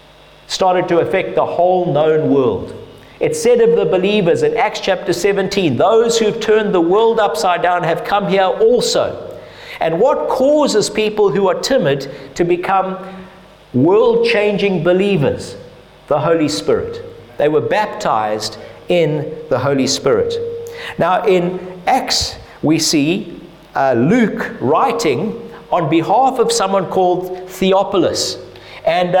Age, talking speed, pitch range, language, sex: 50-69, 130 wpm, 180-235 Hz, English, male